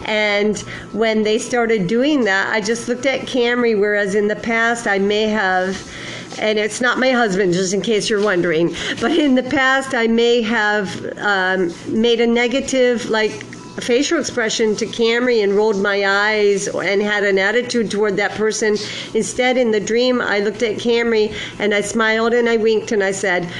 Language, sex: English, female